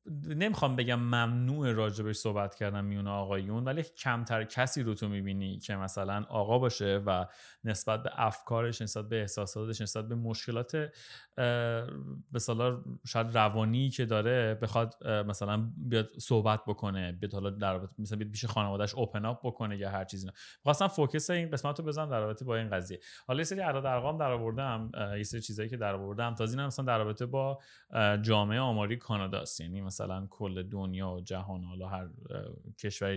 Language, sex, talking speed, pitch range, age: Persian, male, 160 wpm, 100-130 Hz, 30-49